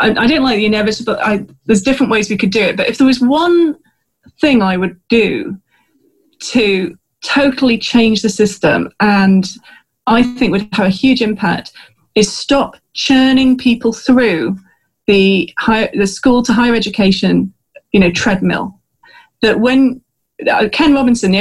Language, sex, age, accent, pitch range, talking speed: English, female, 30-49, British, 200-255 Hz, 155 wpm